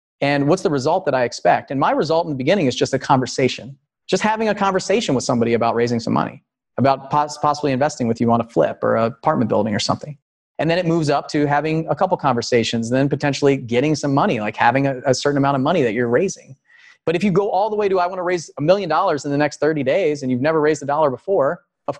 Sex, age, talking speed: male, 30-49, 255 wpm